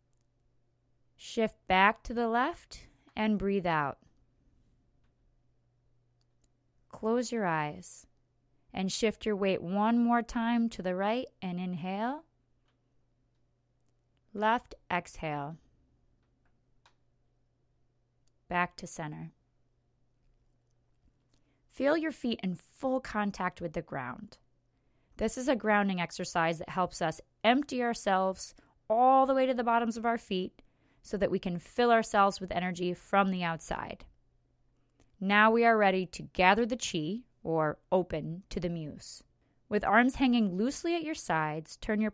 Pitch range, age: 155-235 Hz, 20-39